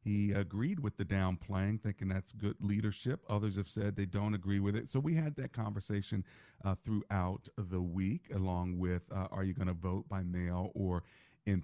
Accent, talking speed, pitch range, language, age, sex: American, 195 wpm, 95-115 Hz, English, 40-59, male